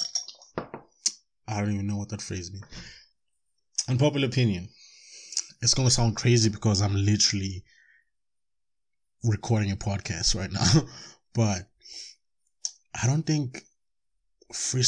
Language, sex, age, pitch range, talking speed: English, male, 20-39, 100-120 Hz, 115 wpm